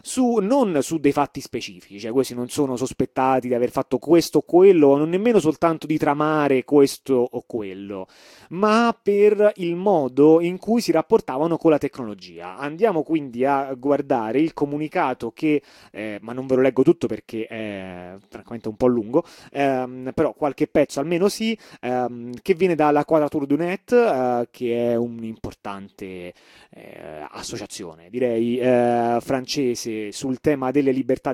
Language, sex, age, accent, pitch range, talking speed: Italian, male, 30-49, native, 120-155 Hz, 155 wpm